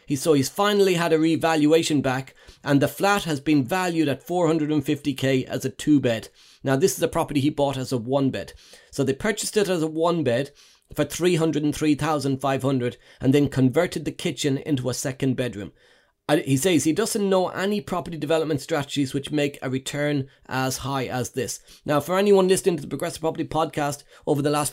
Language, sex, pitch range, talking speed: English, male, 135-165 Hz, 190 wpm